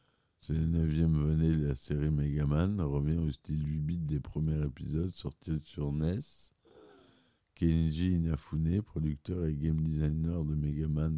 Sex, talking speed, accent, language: male, 140 wpm, French, French